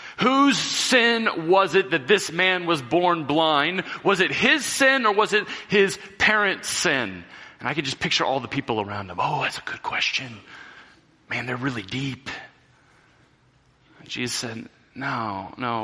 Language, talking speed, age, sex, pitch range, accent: English, 165 wpm, 30-49, male, 120-150 Hz, American